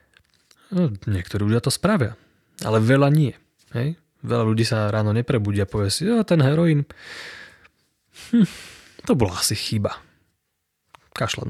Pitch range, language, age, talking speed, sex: 105-135 Hz, Slovak, 20-39, 135 wpm, male